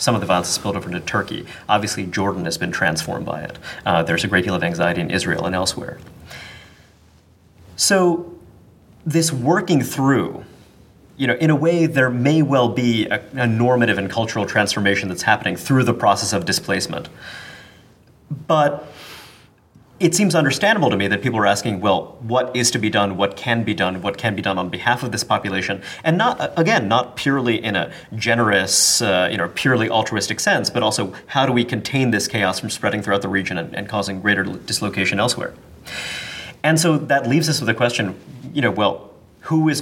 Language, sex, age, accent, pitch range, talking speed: English, male, 30-49, American, 100-130 Hz, 195 wpm